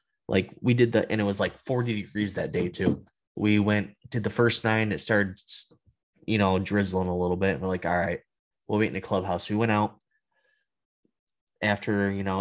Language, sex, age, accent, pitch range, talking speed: English, male, 10-29, American, 100-120 Hz, 205 wpm